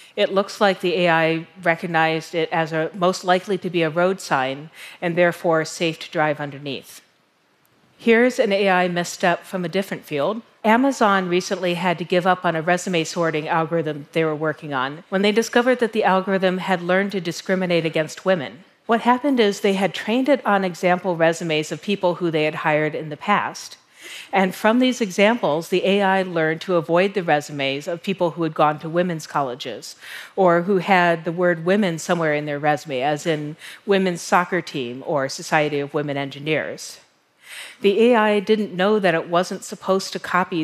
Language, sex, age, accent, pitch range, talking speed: Russian, female, 40-59, American, 160-195 Hz, 185 wpm